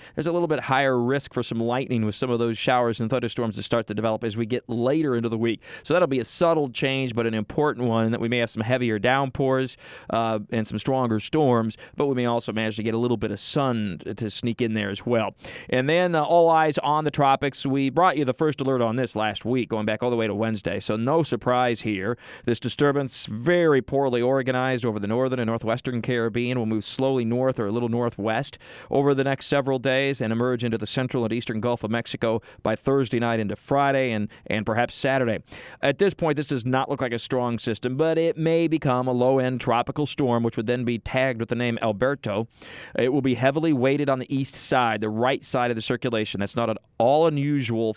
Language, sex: English, male